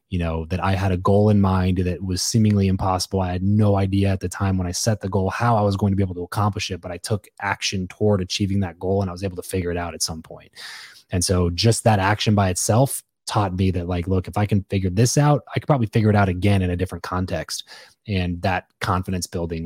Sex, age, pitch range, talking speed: male, 20-39, 95-105 Hz, 265 wpm